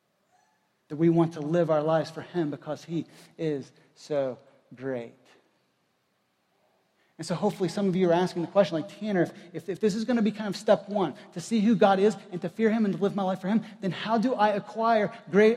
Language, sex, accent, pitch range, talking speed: English, male, American, 155-200 Hz, 230 wpm